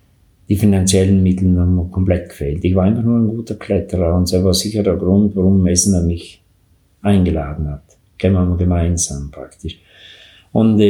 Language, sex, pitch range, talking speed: German, male, 90-105 Hz, 170 wpm